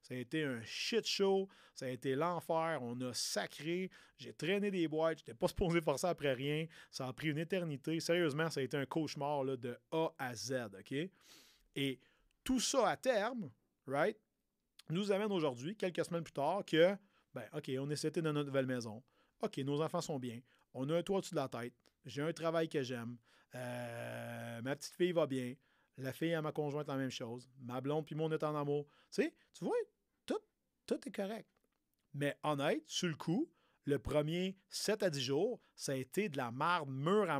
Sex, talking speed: male, 205 wpm